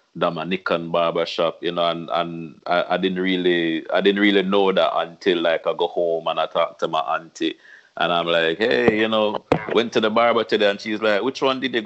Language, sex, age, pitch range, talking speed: English, male, 30-49, 85-110 Hz, 225 wpm